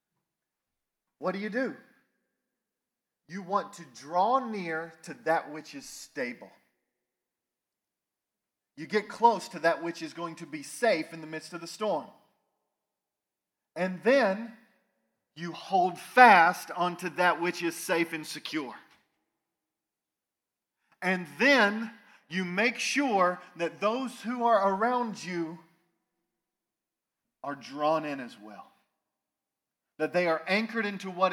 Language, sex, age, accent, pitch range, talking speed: English, male, 40-59, American, 165-230 Hz, 125 wpm